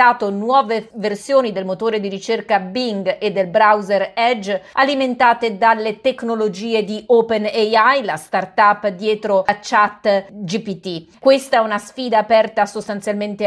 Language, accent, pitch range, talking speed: Italian, native, 185-220 Hz, 125 wpm